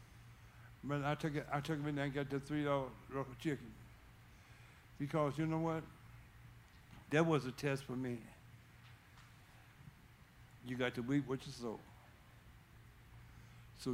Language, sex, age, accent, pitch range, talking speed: English, male, 60-79, American, 120-150 Hz, 130 wpm